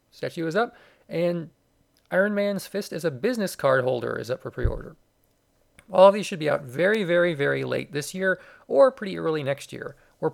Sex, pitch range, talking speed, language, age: male, 140-185 Hz, 195 wpm, English, 40-59